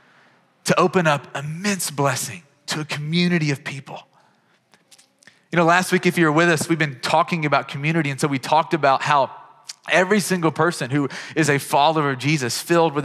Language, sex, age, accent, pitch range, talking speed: English, male, 30-49, American, 150-180 Hz, 190 wpm